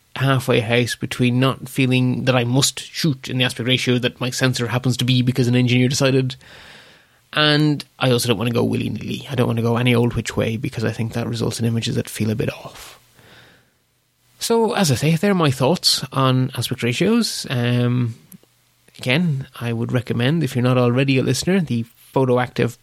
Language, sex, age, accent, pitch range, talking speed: English, male, 20-39, Irish, 120-140 Hz, 200 wpm